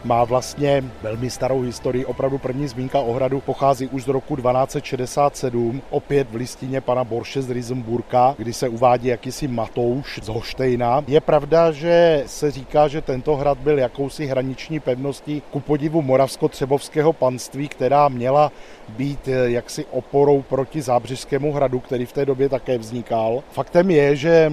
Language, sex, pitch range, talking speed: Czech, male, 125-145 Hz, 150 wpm